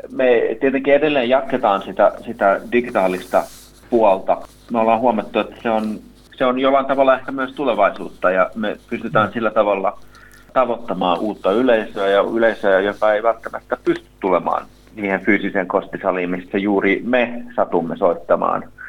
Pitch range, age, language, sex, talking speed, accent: 100-120 Hz, 30-49, Finnish, male, 140 wpm, native